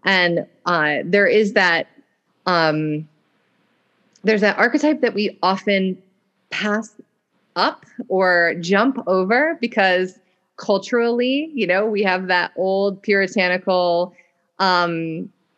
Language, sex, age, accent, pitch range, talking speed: English, female, 30-49, American, 170-210 Hz, 105 wpm